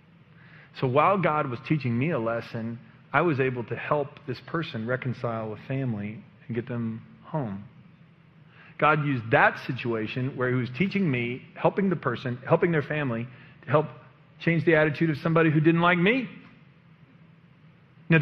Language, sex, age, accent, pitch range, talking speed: English, male, 40-59, American, 140-175 Hz, 160 wpm